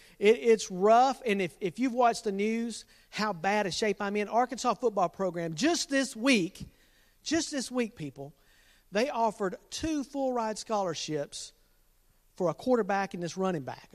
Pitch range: 190-260 Hz